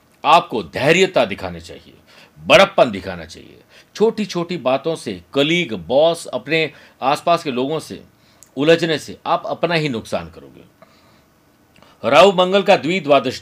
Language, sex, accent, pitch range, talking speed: Hindi, male, native, 125-165 Hz, 130 wpm